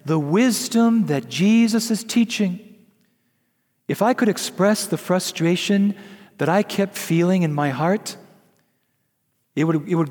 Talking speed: 130 wpm